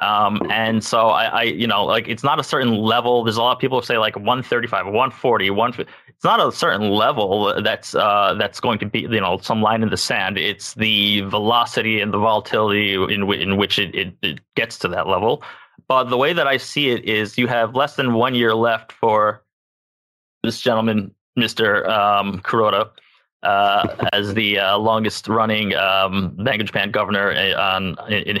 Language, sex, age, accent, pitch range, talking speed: English, male, 20-39, American, 105-120 Hz, 195 wpm